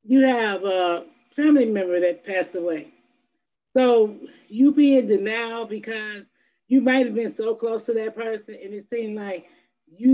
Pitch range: 190-240 Hz